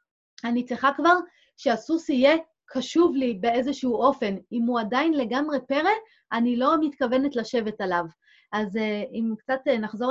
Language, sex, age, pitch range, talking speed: Hebrew, female, 30-49, 220-275 Hz, 135 wpm